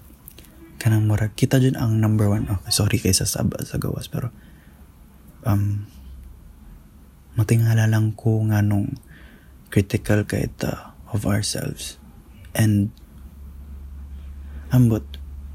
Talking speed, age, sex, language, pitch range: 105 wpm, 20-39, male, English, 75-110 Hz